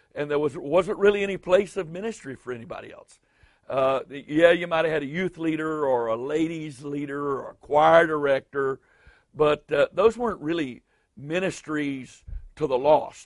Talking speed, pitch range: 170 wpm, 130-160 Hz